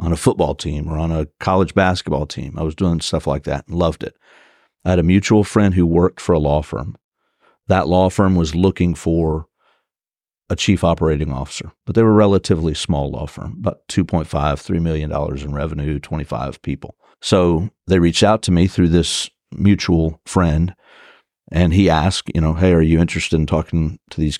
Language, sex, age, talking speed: English, male, 50-69, 195 wpm